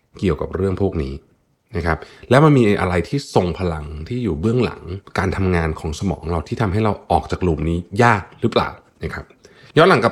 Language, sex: Thai, male